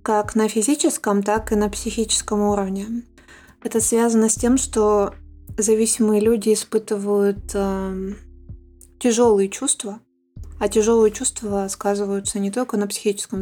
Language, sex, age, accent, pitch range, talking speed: Russian, female, 20-39, native, 200-225 Hz, 120 wpm